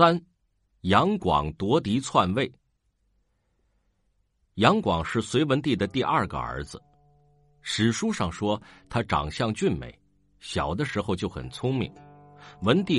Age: 50-69